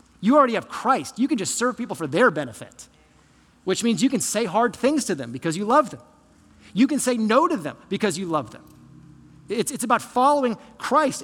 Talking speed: 215 wpm